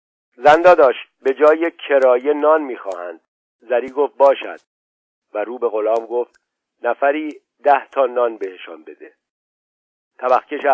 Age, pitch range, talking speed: 50-69, 120-155 Hz, 125 wpm